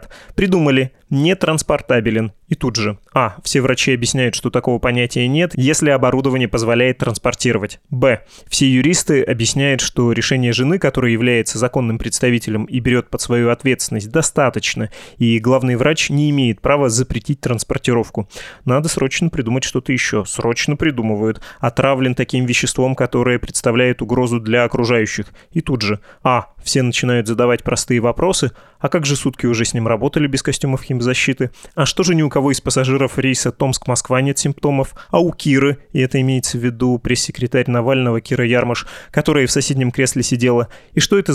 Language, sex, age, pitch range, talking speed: Russian, male, 20-39, 120-140 Hz, 160 wpm